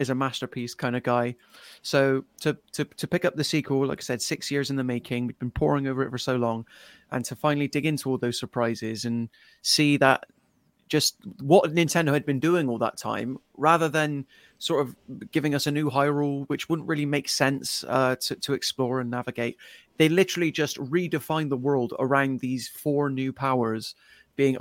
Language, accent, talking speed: English, British, 200 wpm